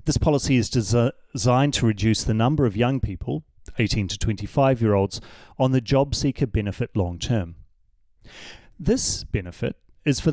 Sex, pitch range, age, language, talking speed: male, 105-135 Hz, 30-49, English, 145 wpm